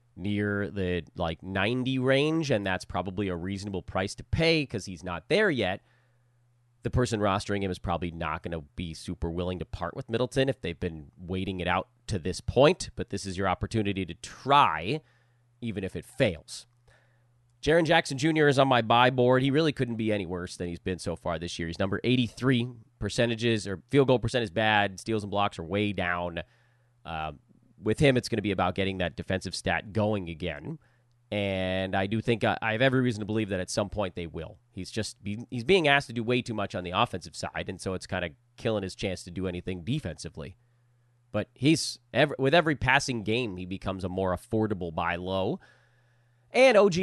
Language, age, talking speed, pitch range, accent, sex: English, 30-49, 210 wpm, 90-120 Hz, American, male